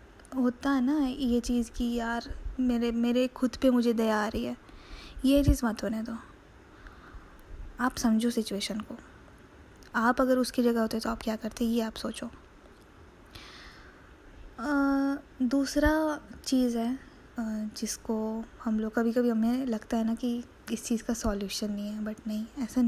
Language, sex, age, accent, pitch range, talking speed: Hindi, female, 20-39, native, 225-255 Hz, 160 wpm